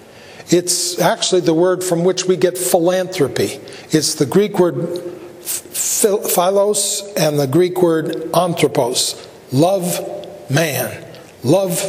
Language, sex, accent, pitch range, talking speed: English, male, American, 160-190 Hz, 110 wpm